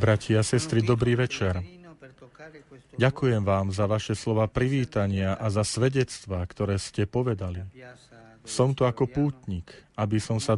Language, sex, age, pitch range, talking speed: Slovak, male, 40-59, 110-130 Hz, 130 wpm